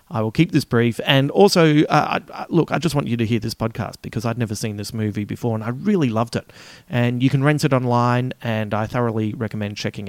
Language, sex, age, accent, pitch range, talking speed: English, male, 30-49, Australian, 110-140 Hz, 240 wpm